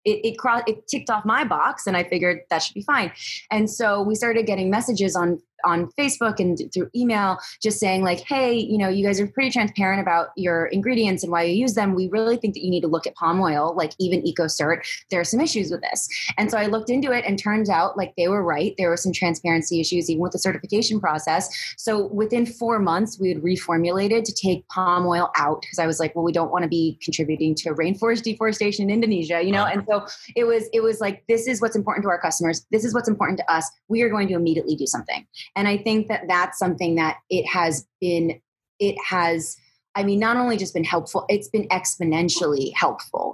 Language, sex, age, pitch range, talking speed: English, female, 20-39, 170-210 Hz, 235 wpm